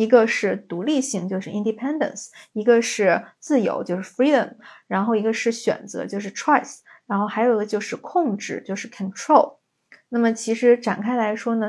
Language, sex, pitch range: Chinese, female, 205-245 Hz